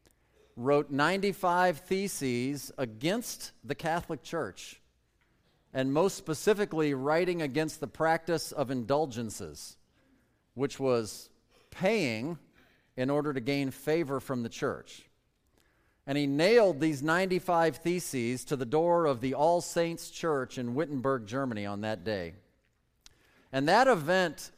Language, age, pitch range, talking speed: English, 40-59, 125-170 Hz, 120 wpm